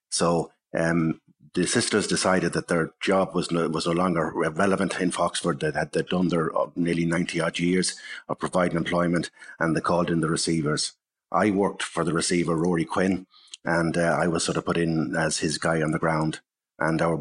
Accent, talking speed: Irish, 200 wpm